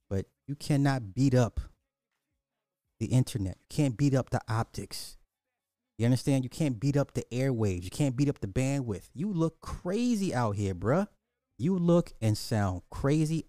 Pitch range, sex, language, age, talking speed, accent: 100-130 Hz, male, English, 30-49, 165 wpm, American